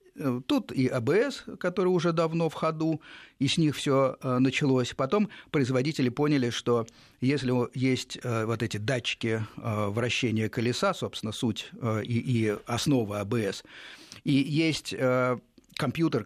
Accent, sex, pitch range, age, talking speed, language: native, male, 115-150 Hz, 50-69, 120 wpm, Russian